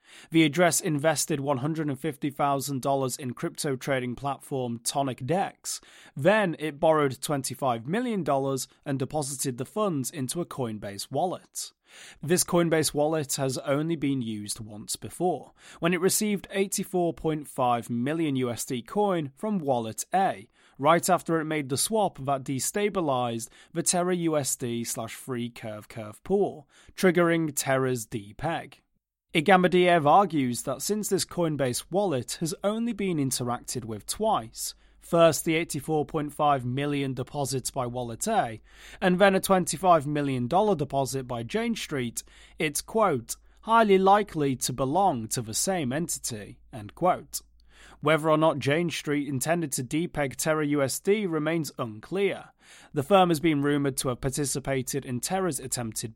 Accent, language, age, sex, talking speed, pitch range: British, English, 30-49, male, 135 wpm, 130-170 Hz